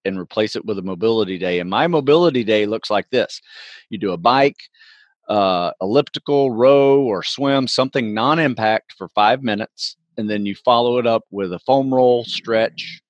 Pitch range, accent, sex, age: 100-135 Hz, American, male, 40-59